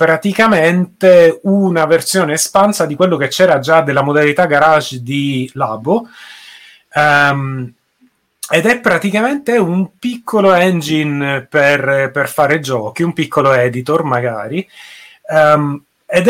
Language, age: Italian, 30-49